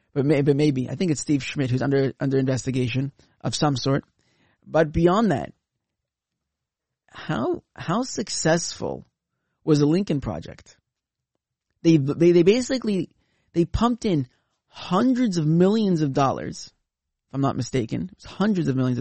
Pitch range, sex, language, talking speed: 120-165 Hz, male, English, 150 wpm